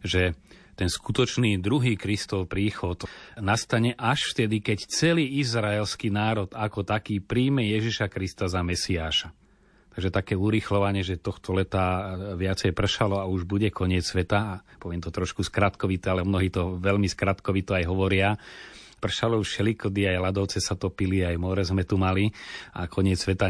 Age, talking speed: 30-49, 155 wpm